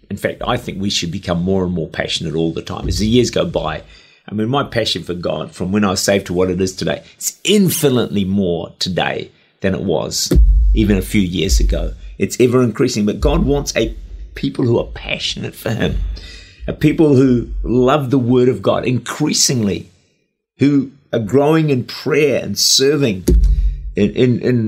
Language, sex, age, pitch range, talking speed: English, male, 50-69, 95-140 Hz, 190 wpm